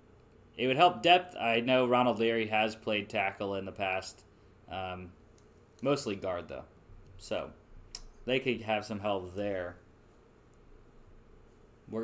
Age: 20-39